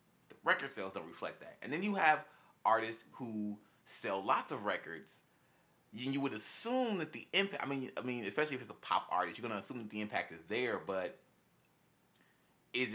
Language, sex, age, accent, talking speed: English, male, 20-39, American, 205 wpm